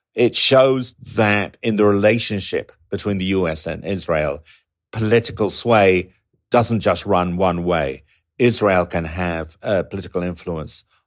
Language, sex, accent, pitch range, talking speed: English, male, British, 85-105 Hz, 130 wpm